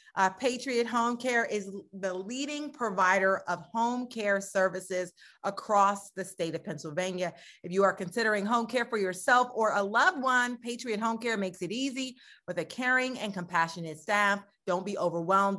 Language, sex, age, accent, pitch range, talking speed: English, female, 30-49, American, 180-230 Hz, 170 wpm